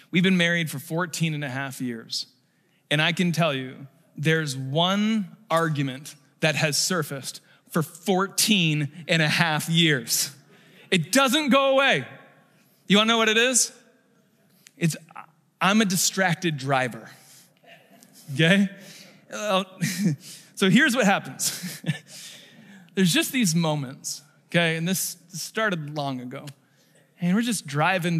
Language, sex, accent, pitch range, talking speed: English, male, American, 155-220 Hz, 130 wpm